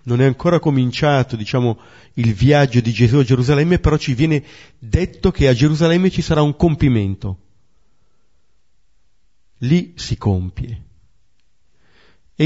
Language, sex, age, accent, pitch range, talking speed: Italian, male, 40-59, native, 110-160 Hz, 125 wpm